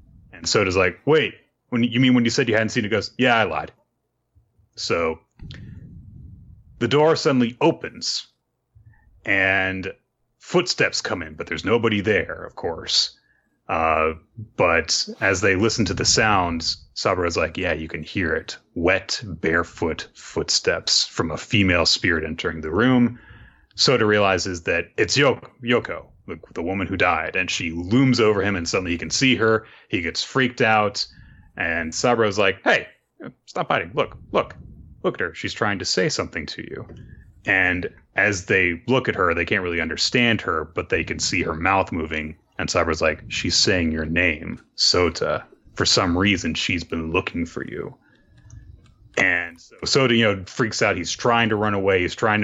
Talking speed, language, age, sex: 170 wpm, English, 30-49, male